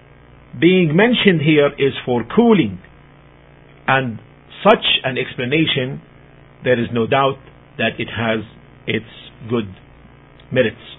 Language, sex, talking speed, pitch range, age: English, male, 110 wpm, 130-165 Hz, 50-69